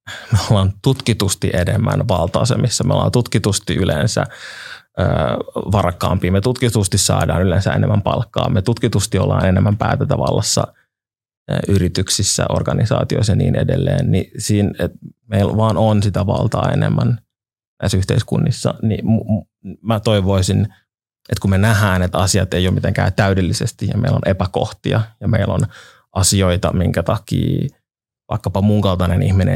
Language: Finnish